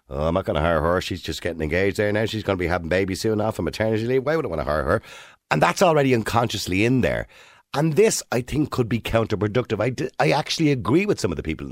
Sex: male